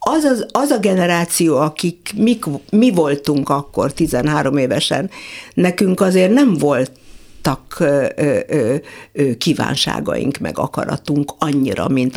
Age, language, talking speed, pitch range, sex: 60-79, Hungarian, 120 wpm, 145-185 Hz, female